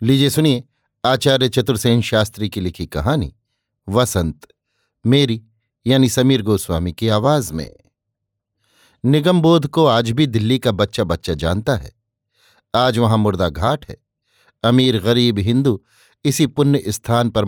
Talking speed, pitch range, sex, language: 130 wpm, 105-130 Hz, male, Hindi